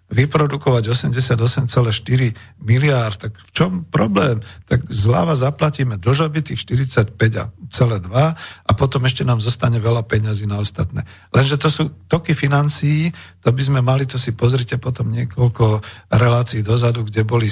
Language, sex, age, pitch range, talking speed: Slovak, male, 50-69, 105-130 Hz, 135 wpm